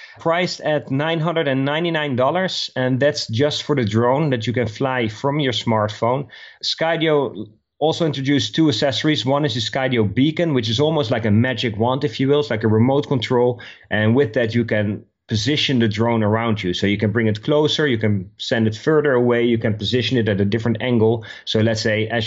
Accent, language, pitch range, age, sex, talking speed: Dutch, English, 105-135 Hz, 30-49, male, 200 wpm